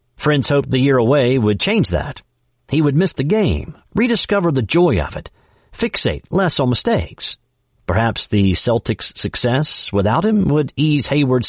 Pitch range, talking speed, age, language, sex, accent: 110-150 Hz, 160 wpm, 50-69, English, male, American